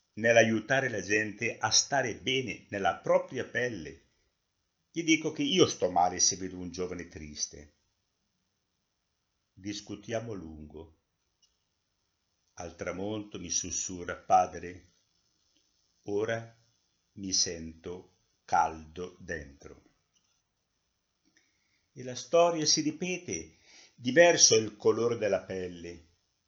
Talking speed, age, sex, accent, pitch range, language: 95 wpm, 60-79, male, native, 90-130 Hz, Italian